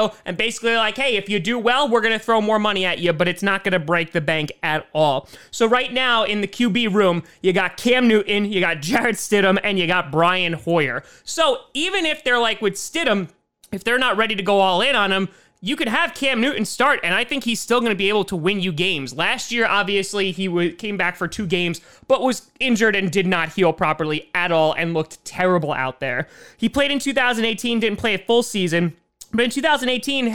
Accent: American